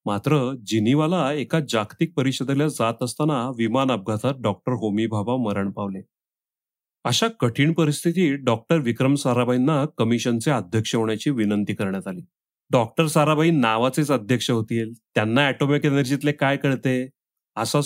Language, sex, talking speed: Marathi, male, 125 wpm